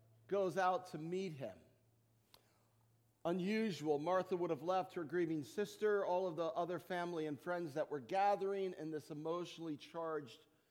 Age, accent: 50-69, American